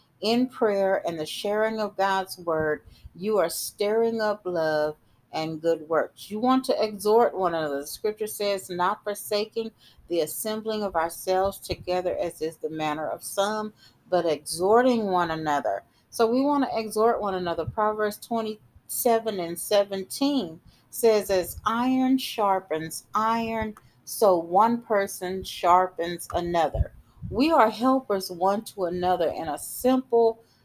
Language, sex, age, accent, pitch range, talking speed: English, female, 40-59, American, 175-225 Hz, 140 wpm